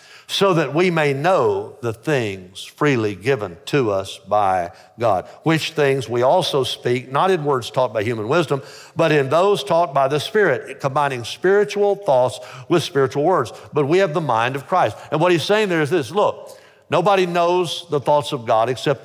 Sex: male